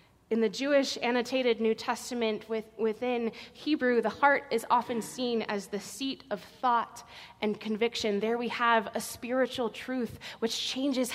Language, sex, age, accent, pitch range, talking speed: English, female, 20-39, American, 205-235 Hz, 155 wpm